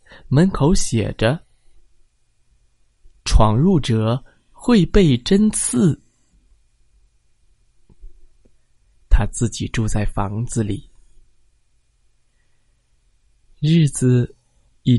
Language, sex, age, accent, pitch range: Chinese, male, 20-39, native, 115-170 Hz